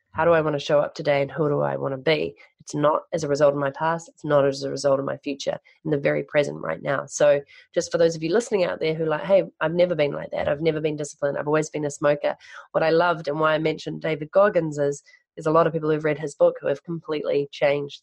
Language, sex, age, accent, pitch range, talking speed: English, female, 30-49, Australian, 140-170 Hz, 285 wpm